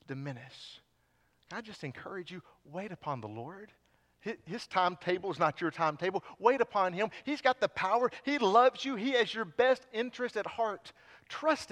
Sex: male